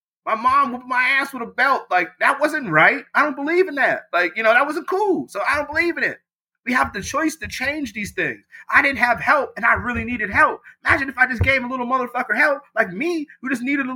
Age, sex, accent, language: 30-49, male, American, English